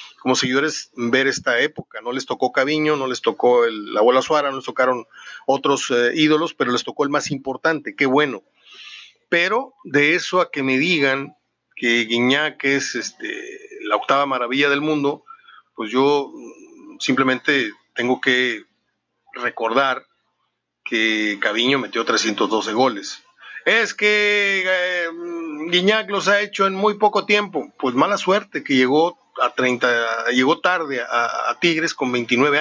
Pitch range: 130-165 Hz